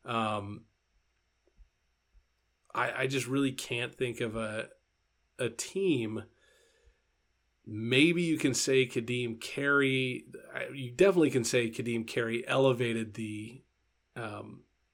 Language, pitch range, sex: English, 105-130 Hz, male